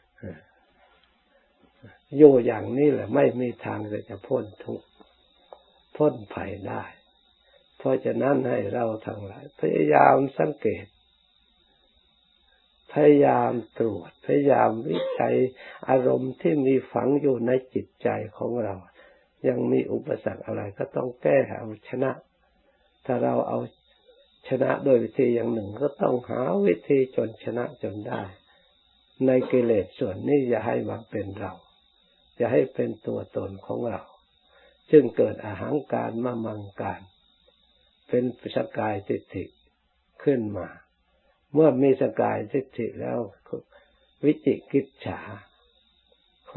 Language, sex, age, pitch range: Thai, male, 60-79, 105-140 Hz